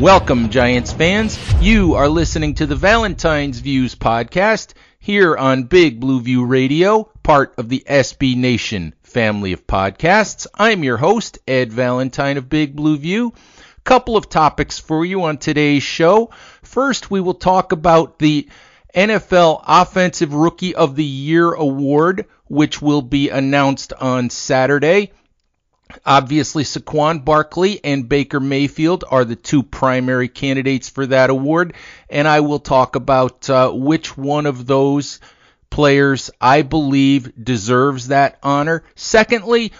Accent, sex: American, male